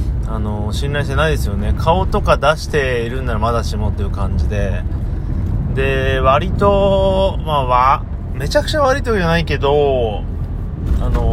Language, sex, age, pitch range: Japanese, male, 30-49, 100-135 Hz